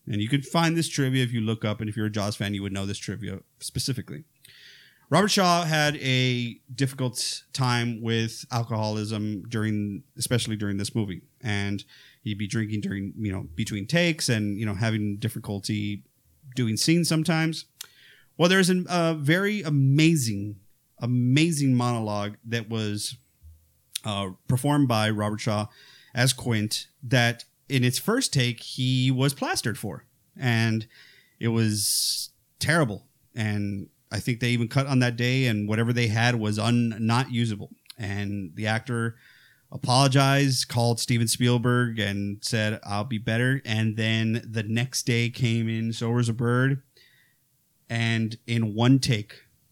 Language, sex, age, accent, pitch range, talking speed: English, male, 30-49, American, 110-130 Hz, 150 wpm